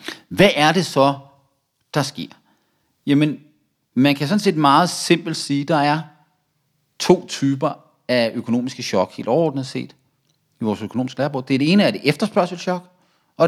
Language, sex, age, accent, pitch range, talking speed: Danish, male, 40-59, native, 125-160 Hz, 160 wpm